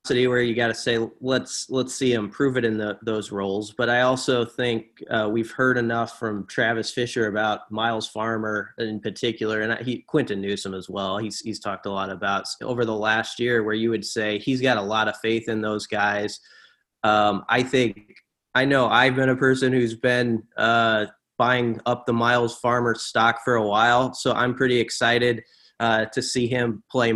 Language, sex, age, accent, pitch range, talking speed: English, male, 20-39, American, 110-125 Hz, 200 wpm